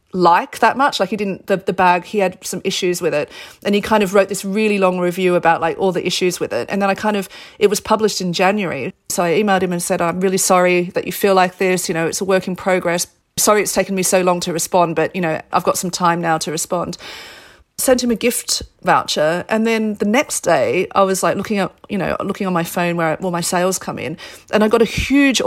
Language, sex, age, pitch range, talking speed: English, female, 40-59, 180-205 Hz, 265 wpm